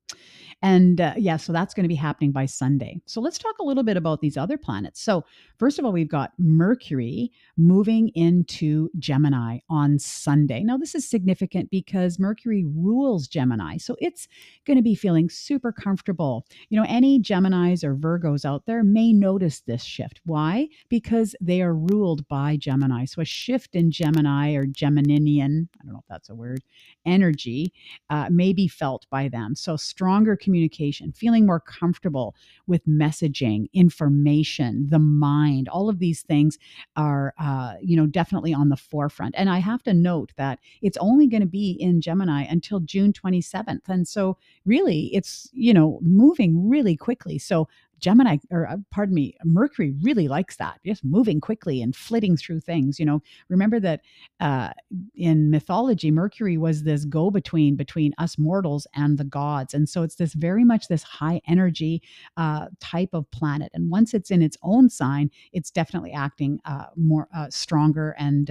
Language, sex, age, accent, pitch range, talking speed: English, female, 50-69, American, 145-195 Hz, 175 wpm